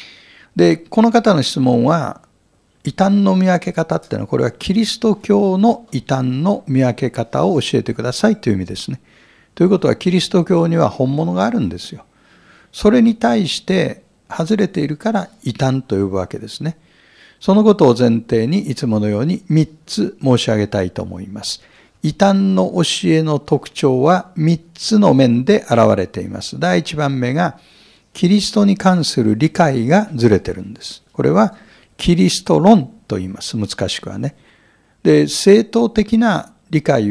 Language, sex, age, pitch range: Japanese, male, 60-79, 120-195 Hz